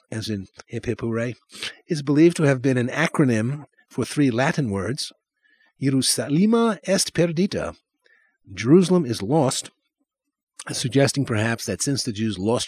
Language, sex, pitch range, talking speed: English, male, 115-175 Hz, 125 wpm